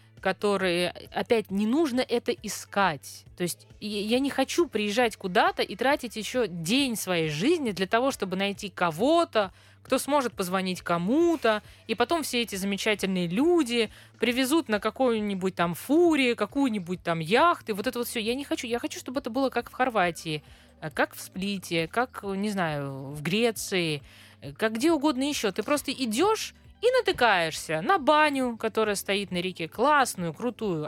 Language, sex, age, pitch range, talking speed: Russian, female, 20-39, 185-265 Hz, 160 wpm